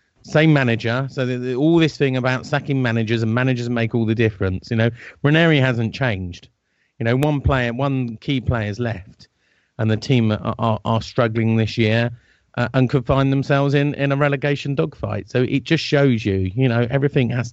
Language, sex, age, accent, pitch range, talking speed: English, male, 40-59, British, 110-130 Hz, 200 wpm